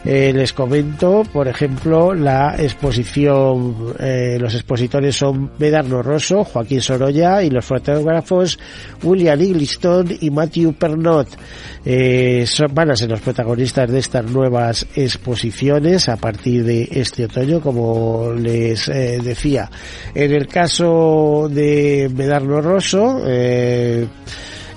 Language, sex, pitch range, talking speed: Spanish, male, 125-160 Hz, 120 wpm